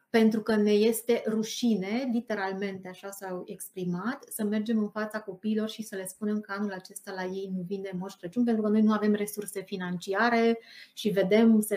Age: 30-49